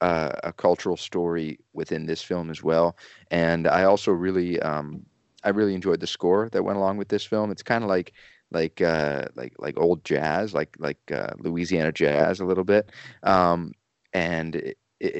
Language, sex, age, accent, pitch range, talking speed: English, male, 30-49, American, 85-105 Hz, 180 wpm